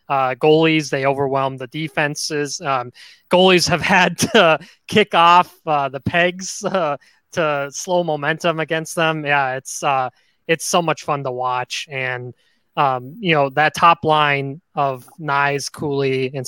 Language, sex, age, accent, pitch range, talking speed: English, male, 20-39, American, 135-170 Hz, 155 wpm